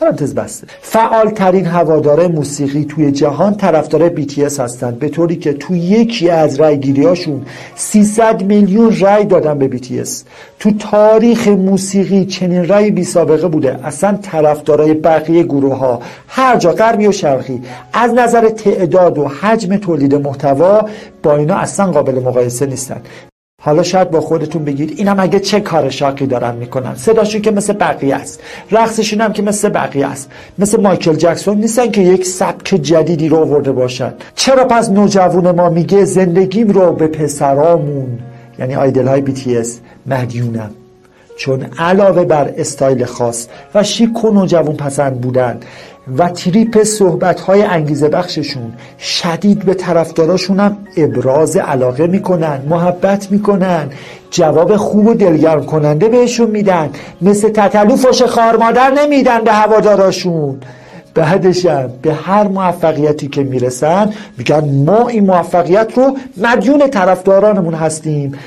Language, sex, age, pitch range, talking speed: Persian, male, 50-69, 145-205 Hz, 135 wpm